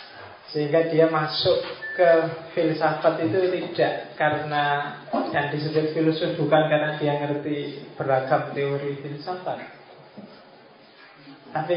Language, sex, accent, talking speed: Indonesian, male, native, 95 wpm